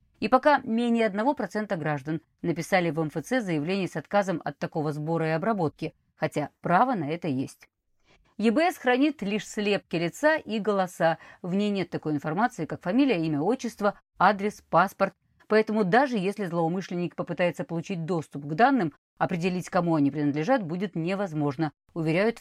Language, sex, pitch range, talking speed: Russian, female, 160-220 Hz, 145 wpm